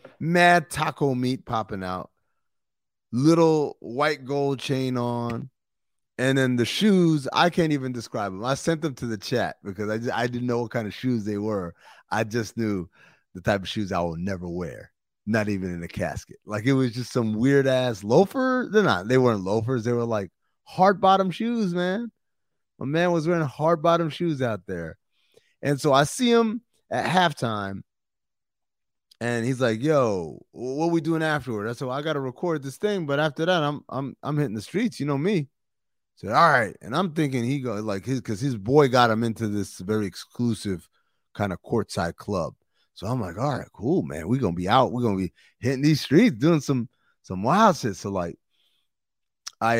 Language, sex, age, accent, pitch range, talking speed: English, male, 30-49, American, 110-155 Hz, 200 wpm